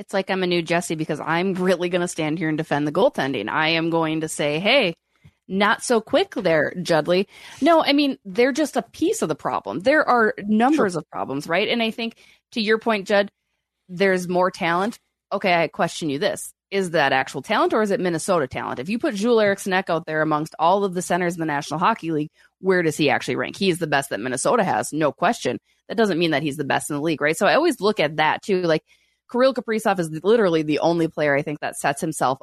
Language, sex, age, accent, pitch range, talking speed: English, female, 20-39, American, 160-215 Hz, 240 wpm